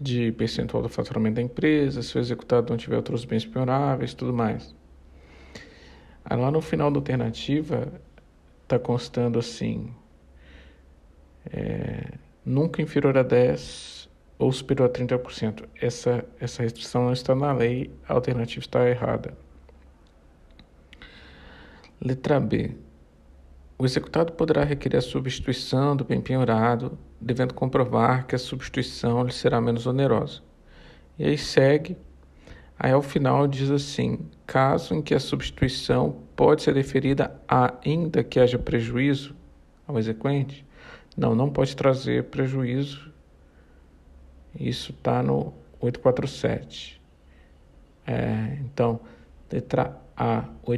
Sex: male